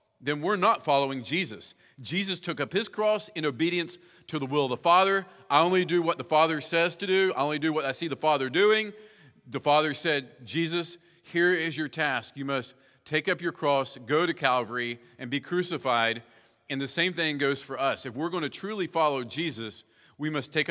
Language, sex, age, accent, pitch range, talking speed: English, male, 40-59, American, 120-165 Hz, 210 wpm